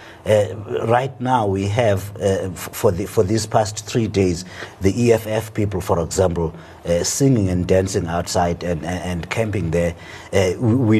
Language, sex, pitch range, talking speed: English, male, 100-130 Hz, 170 wpm